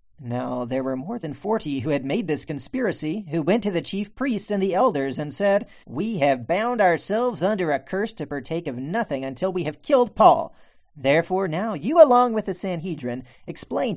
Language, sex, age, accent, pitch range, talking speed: English, male, 40-59, American, 145-220 Hz, 200 wpm